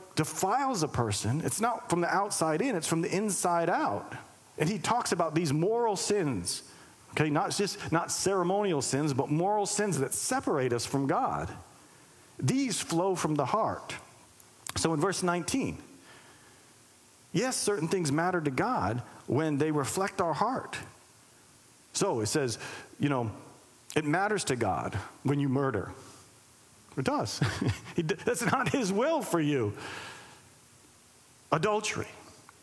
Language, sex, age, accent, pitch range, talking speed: English, male, 40-59, American, 130-190 Hz, 140 wpm